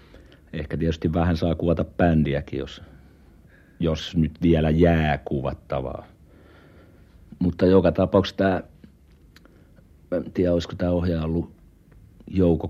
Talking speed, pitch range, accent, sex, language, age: 105 wpm, 80-95 Hz, native, male, Finnish, 60-79